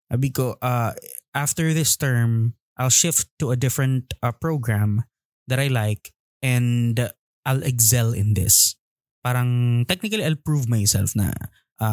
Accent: native